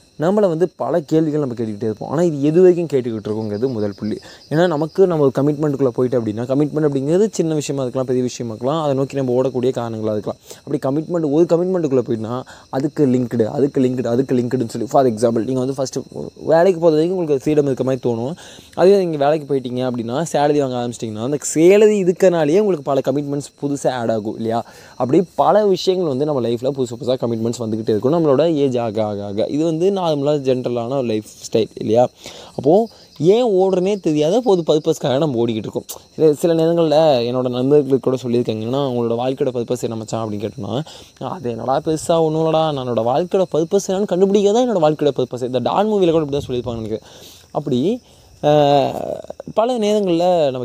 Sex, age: male, 20-39